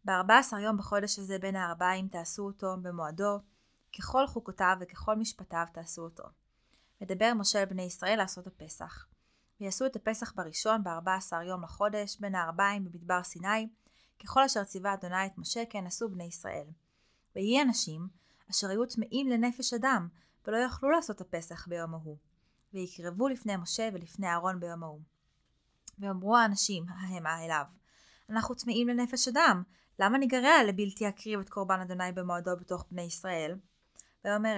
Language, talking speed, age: Hebrew, 150 wpm, 20-39